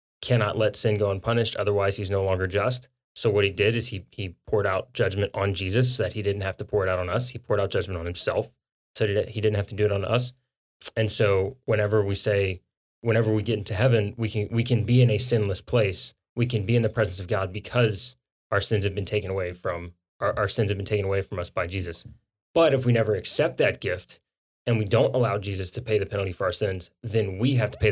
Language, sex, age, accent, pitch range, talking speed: English, male, 20-39, American, 100-115 Hz, 255 wpm